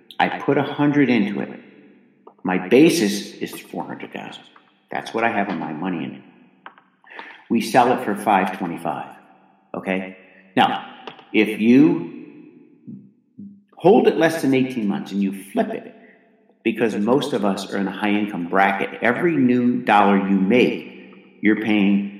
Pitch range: 95-145 Hz